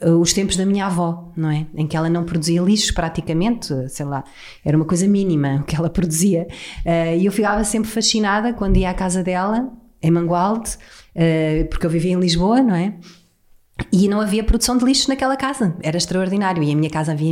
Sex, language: female, Portuguese